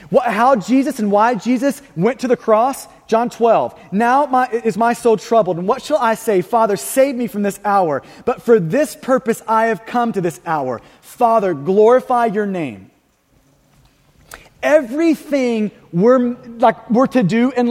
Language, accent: English, American